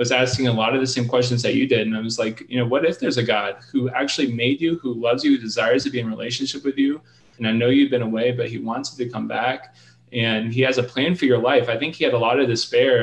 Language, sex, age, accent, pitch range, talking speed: English, male, 20-39, American, 115-125 Hz, 305 wpm